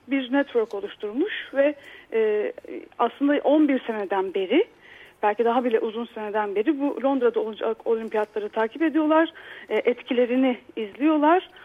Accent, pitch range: native, 245-355 Hz